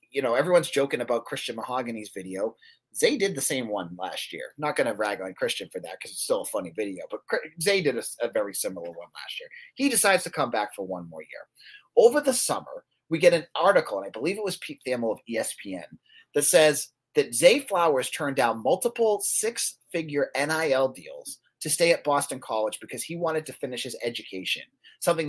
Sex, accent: male, American